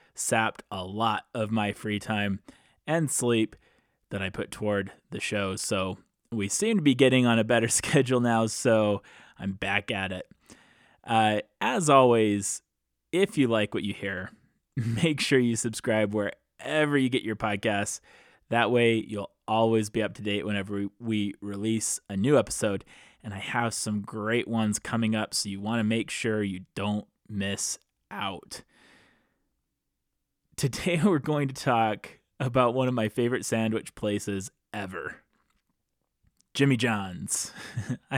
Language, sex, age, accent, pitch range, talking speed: English, male, 20-39, American, 105-130 Hz, 150 wpm